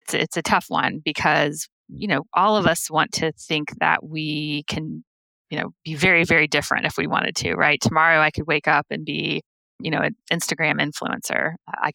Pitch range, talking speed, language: 155-185 Hz, 200 wpm, English